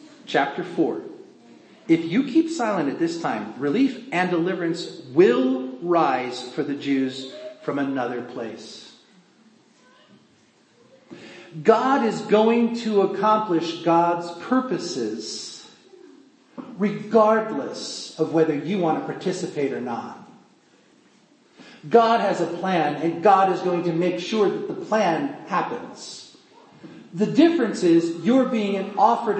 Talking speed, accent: 115 wpm, American